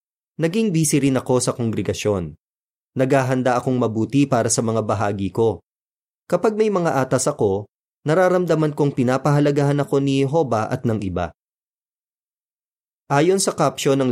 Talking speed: 135 wpm